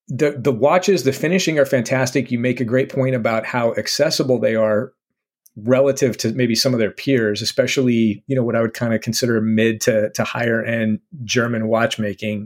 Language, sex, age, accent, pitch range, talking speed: English, male, 40-59, American, 115-135 Hz, 195 wpm